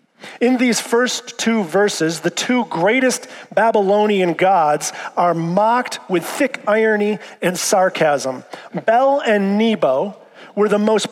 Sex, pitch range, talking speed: male, 180-240 Hz, 125 wpm